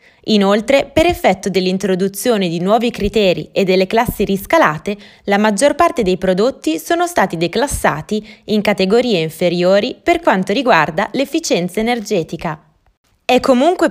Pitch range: 185-255 Hz